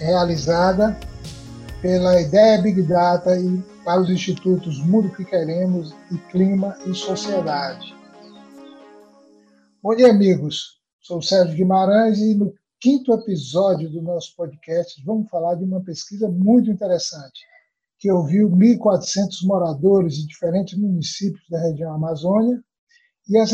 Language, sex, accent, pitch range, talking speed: Portuguese, male, Brazilian, 170-210 Hz, 125 wpm